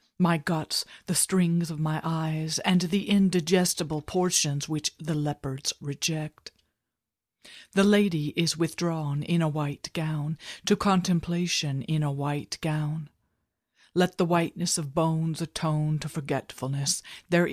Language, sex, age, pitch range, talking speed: English, female, 50-69, 150-180 Hz, 130 wpm